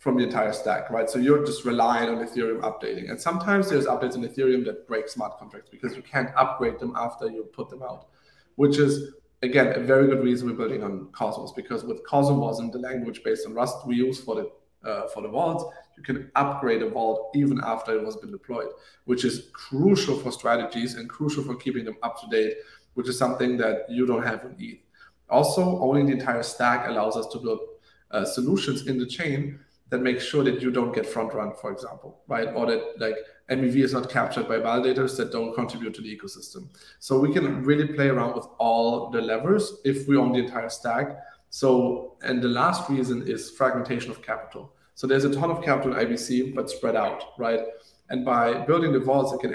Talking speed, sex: 215 wpm, male